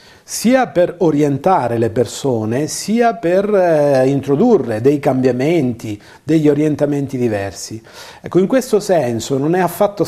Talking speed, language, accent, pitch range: 125 wpm, Italian, native, 130-175 Hz